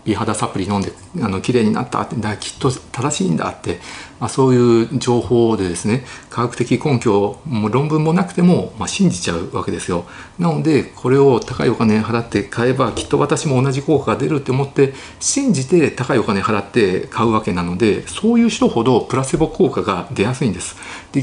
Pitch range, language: 105-155 Hz, Japanese